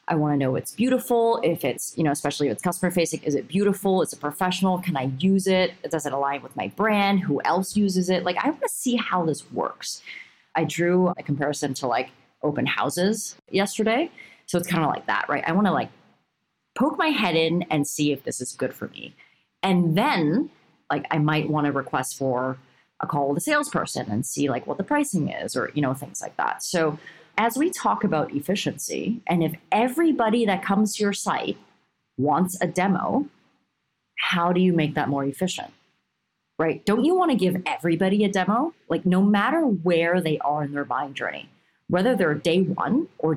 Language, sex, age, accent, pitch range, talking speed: English, female, 30-49, American, 155-210 Hz, 210 wpm